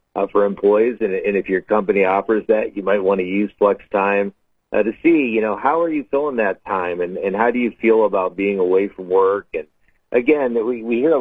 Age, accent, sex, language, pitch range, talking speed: 40-59, American, male, English, 100-125 Hz, 240 wpm